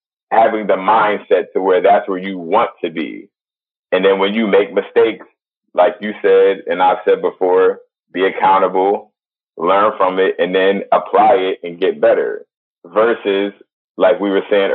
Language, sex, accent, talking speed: English, male, American, 165 wpm